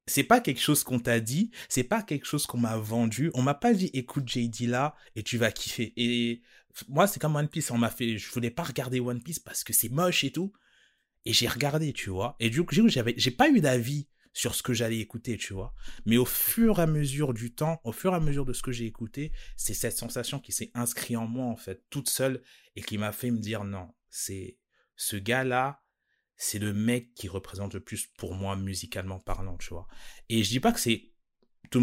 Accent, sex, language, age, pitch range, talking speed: French, male, French, 30-49, 105-130 Hz, 240 wpm